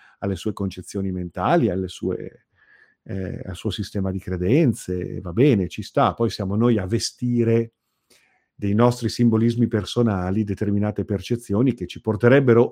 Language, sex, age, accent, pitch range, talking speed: Italian, male, 50-69, native, 95-115 Hz, 130 wpm